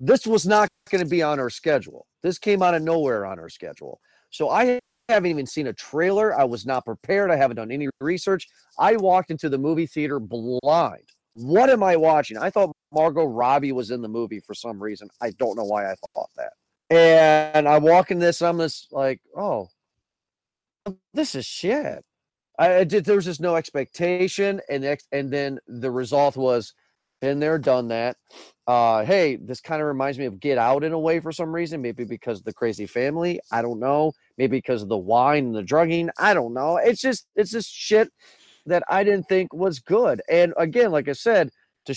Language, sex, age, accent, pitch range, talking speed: English, male, 40-59, American, 130-190 Hz, 210 wpm